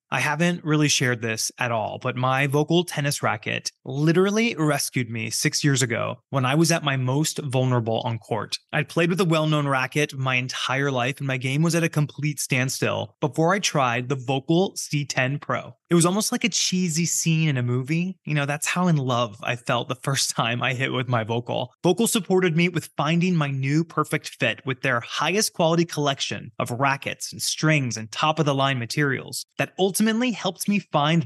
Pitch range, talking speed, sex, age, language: 135-180 Hz, 200 wpm, male, 20-39, English